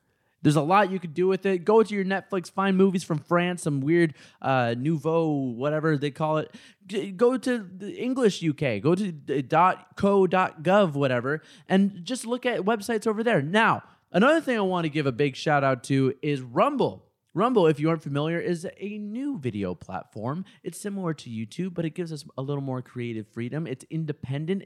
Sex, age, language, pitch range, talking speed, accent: male, 20-39, English, 135-200 Hz, 190 wpm, American